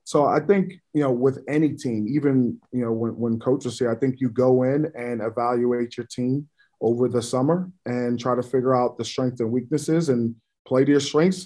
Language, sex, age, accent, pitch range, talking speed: English, male, 20-39, American, 120-140 Hz, 215 wpm